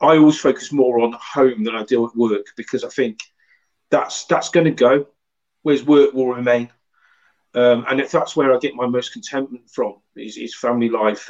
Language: English